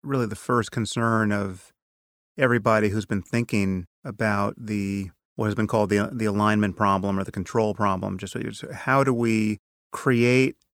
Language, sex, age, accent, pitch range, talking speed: English, male, 30-49, American, 100-125 Hz, 155 wpm